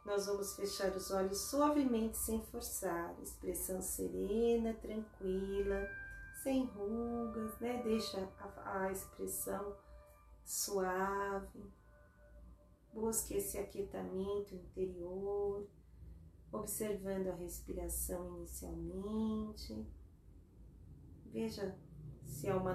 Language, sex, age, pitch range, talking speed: Portuguese, female, 30-49, 175-200 Hz, 80 wpm